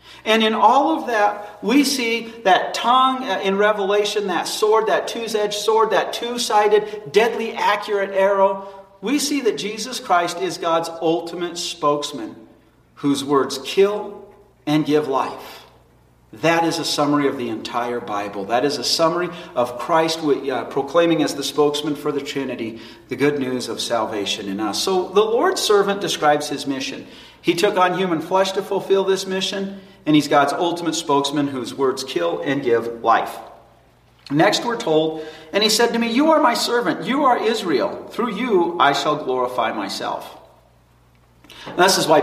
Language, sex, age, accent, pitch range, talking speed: English, male, 40-59, American, 140-205 Hz, 165 wpm